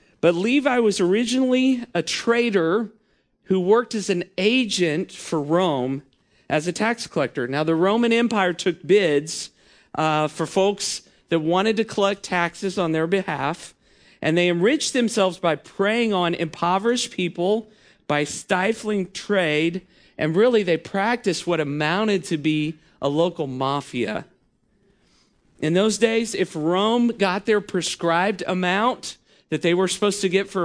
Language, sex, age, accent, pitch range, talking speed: English, male, 40-59, American, 155-210 Hz, 145 wpm